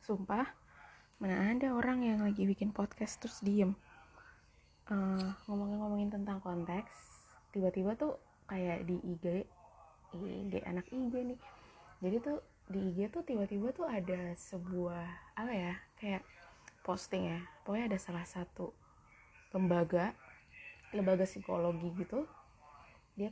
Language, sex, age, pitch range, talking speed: Indonesian, female, 20-39, 180-240 Hz, 120 wpm